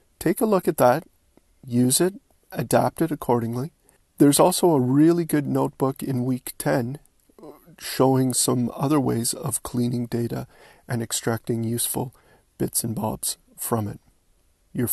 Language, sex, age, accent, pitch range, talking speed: English, male, 40-59, American, 120-155 Hz, 140 wpm